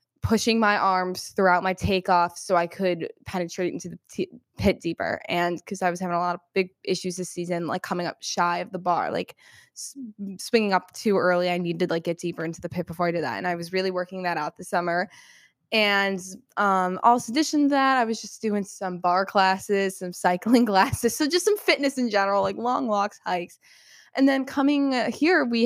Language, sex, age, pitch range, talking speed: English, female, 10-29, 185-240 Hz, 215 wpm